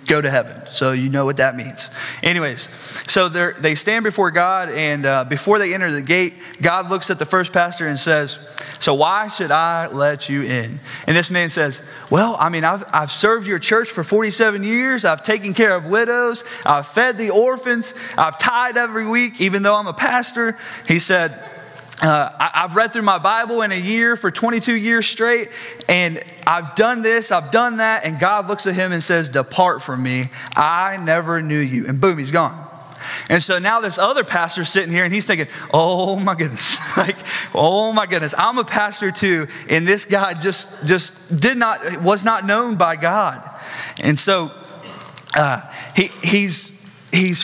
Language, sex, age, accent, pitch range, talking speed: English, male, 20-39, American, 160-215 Hz, 190 wpm